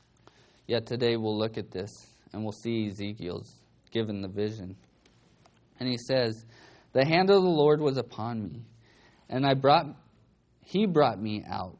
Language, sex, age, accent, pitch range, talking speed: English, male, 20-39, American, 110-140 Hz, 160 wpm